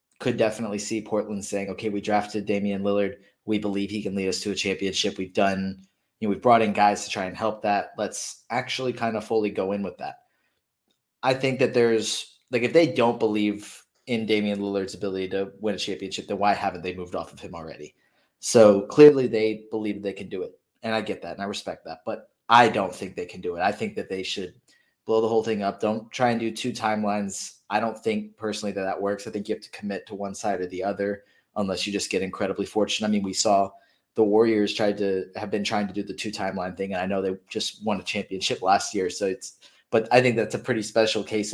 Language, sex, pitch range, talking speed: English, male, 100-110 Hz, 245 wpm